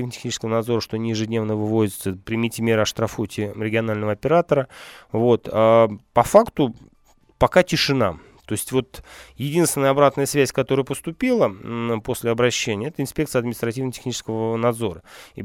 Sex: male